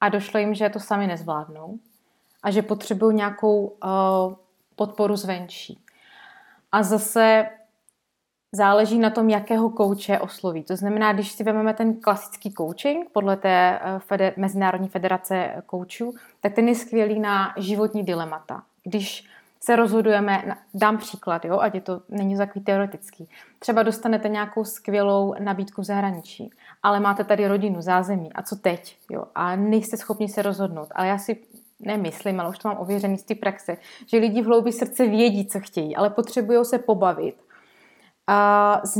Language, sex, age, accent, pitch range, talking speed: Czech, female, 20-39, native, 190-220 Hz, 155 wpm